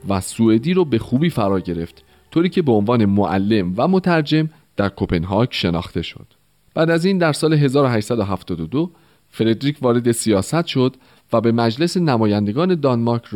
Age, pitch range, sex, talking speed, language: 40-59, 100-155 Hz, male, 150 wpm, Persian